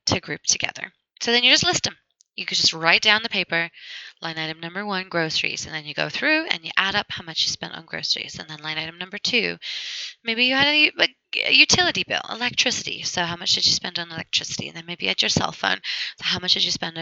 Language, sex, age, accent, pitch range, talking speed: English, female, 20-39, American, 165-215 Hz, 255 wpm